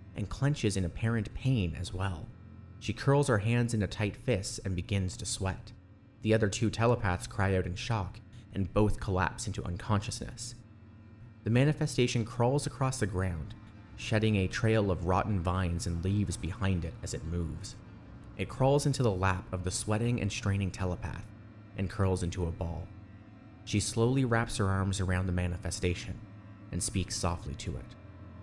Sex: male